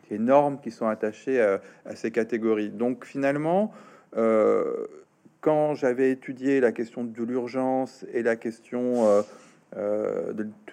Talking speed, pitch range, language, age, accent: 130 wpm, 110-140 Hz, French, 40-59, French